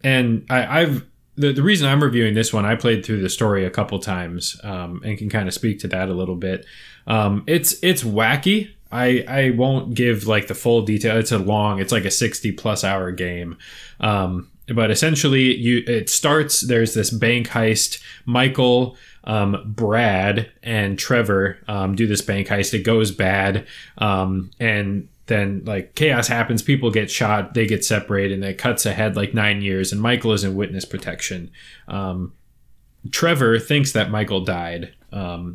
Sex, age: male, 20-39